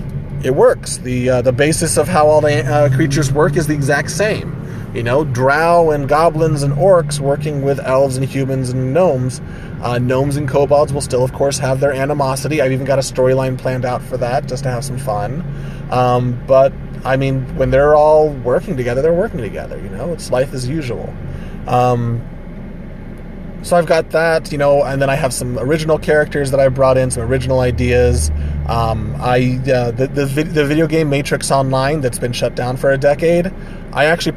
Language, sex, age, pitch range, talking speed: English, male, 30-49, 125-150 Hz, 200 wpm